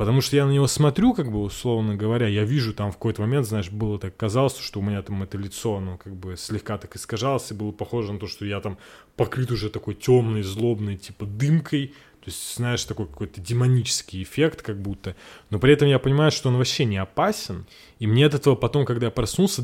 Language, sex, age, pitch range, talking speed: Russian, male, 20-39, 105-125 Hz, 225 wpm